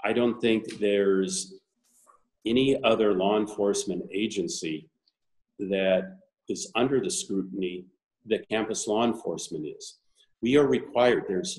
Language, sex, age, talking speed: English, male, 50-69, 120 wpm